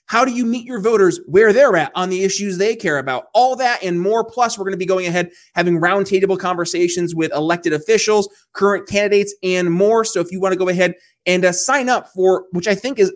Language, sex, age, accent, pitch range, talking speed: English, male, 20-39, American, 170-210 Hz, 235 wpm